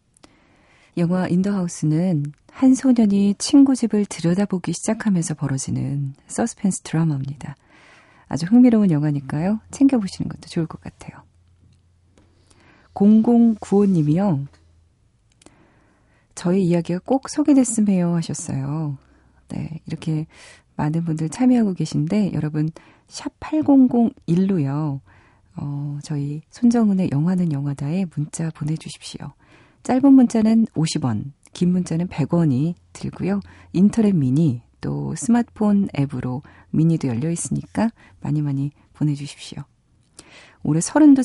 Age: 40-59